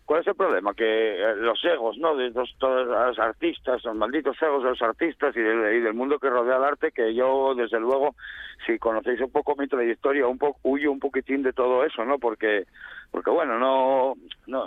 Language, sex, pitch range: Spanish, male, 115-140 Hz